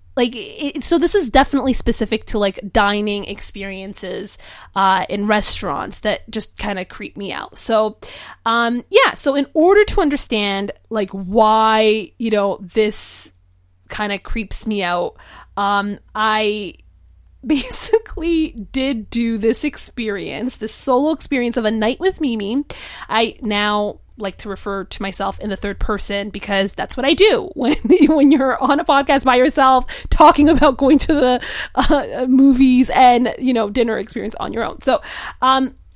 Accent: American